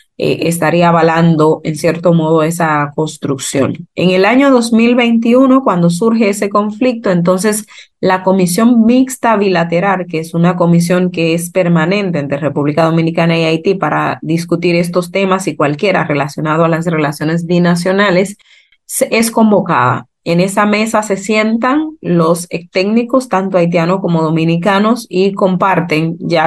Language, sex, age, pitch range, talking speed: Spanish, female, 30-49, 165-205 Hz, 135 wpm